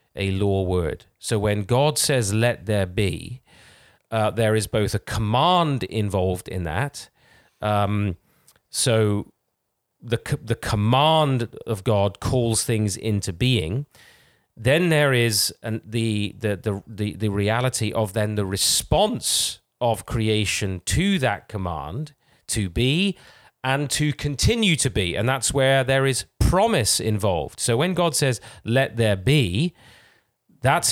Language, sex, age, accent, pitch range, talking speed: English, male, 30-49, British, 105-135 Hz, 140 wpm